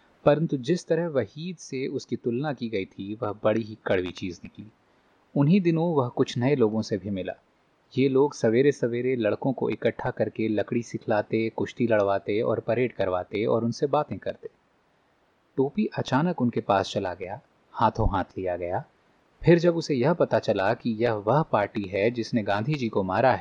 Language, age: Hindi, 30-49